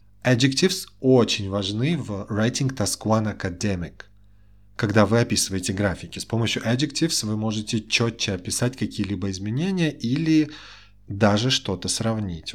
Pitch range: 95-120 Hz